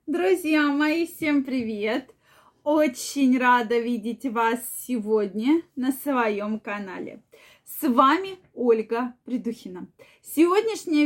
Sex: female